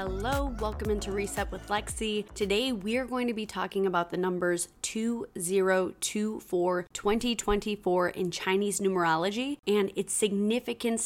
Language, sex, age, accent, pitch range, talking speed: English, female, 20-39, American, 185-210 Hz, 130 wpm